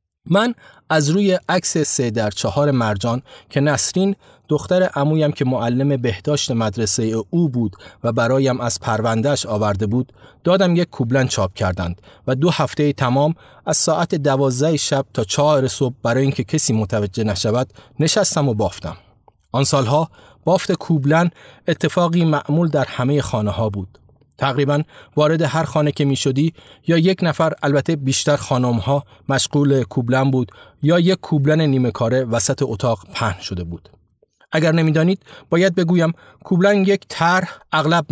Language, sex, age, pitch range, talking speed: Persian, male, 30-49, 120-160 Hz, 145 wpm